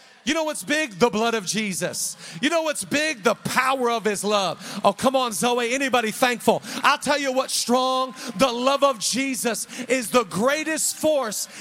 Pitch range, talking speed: 215-260 Hz, 185 wpm